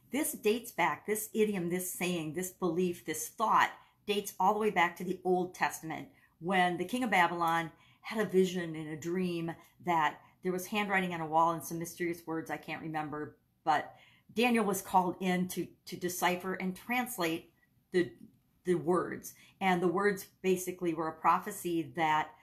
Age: 50-69